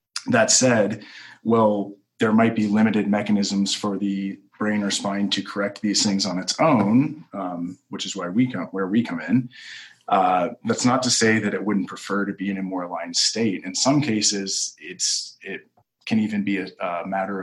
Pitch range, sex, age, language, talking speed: 95-110 Hz, male, 20-39, English, 195 wpm